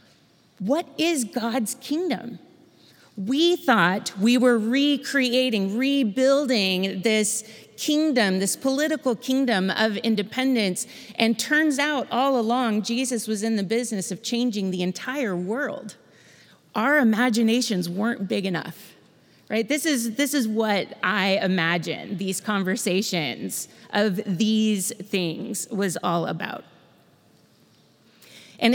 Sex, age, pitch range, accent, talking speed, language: female, 30-49, 180-235 Hz, American, 115 wpm, English